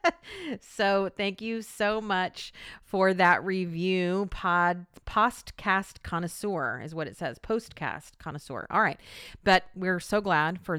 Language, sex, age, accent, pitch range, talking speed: English, female, 40-59, American, 160-215 Hz, 135 wpm